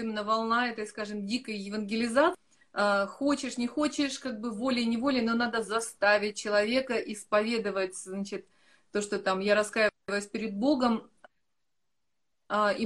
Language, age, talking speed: Russian, 30-49, 130 wpm